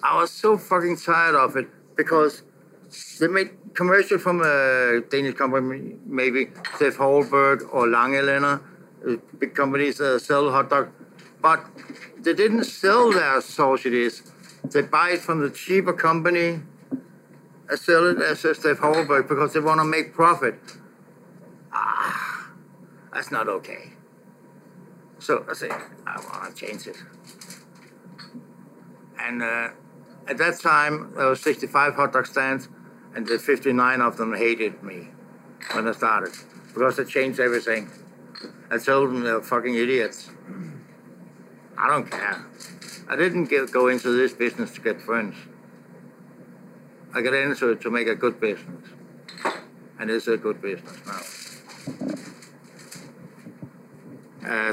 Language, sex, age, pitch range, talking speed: English, male, 60-79, 125-165 Hz, 140 wpm